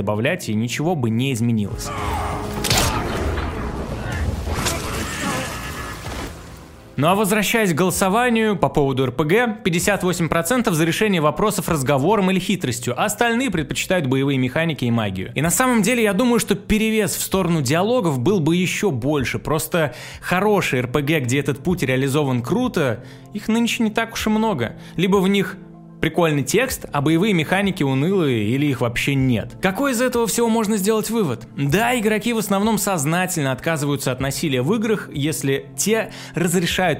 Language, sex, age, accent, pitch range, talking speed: Russian, male, 20-39, native, 135-205 Hz, 150 wpm